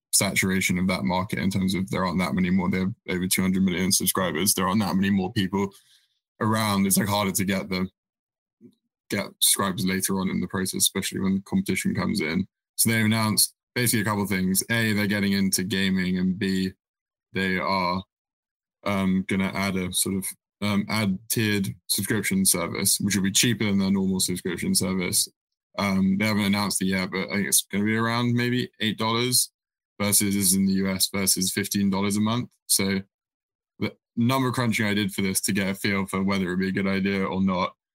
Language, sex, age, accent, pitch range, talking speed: English, male, 20-39, British, 95-105 Hz, 200 wpm